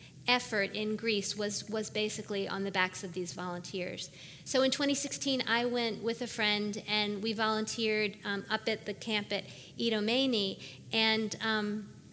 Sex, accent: female, American